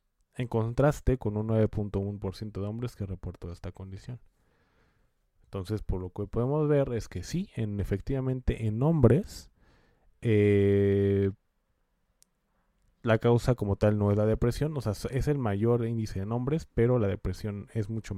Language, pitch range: Spanish, 95-115 Hz